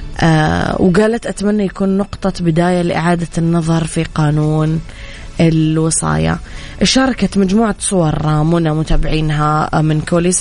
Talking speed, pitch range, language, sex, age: 100 wpm, 155-180 Hz, Arabic, female, 20-39